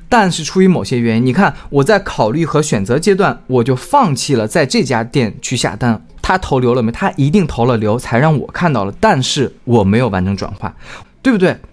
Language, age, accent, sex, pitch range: Chinese, 20-39, native, male, 120-195 Hz